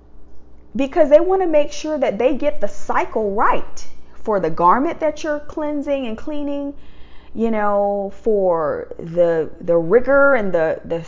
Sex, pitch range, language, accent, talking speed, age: female, 205-280 Hz, English, American, 155 wpm, 40-59